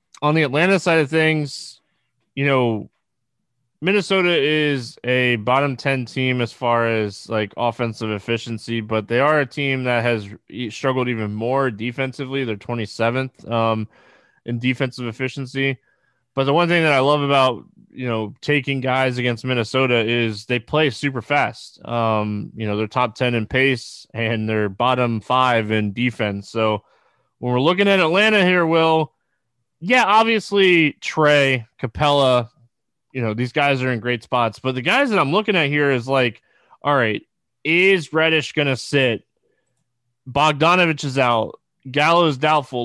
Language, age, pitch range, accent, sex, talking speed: English, 20-39, 120-155 Hz, American, male, 160 wpm